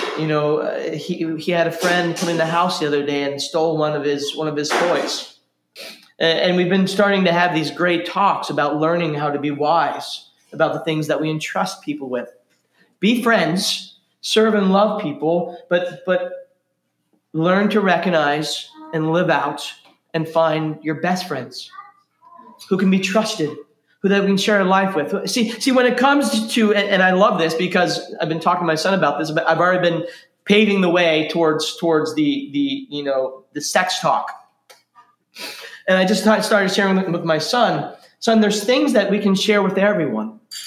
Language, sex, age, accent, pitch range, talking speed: English, male, 20-39, American, 155-210 Hz, 190 wpm